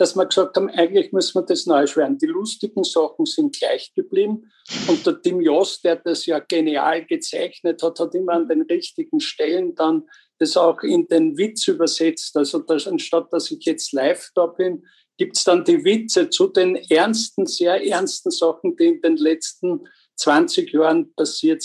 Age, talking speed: 50-69, 185 wpm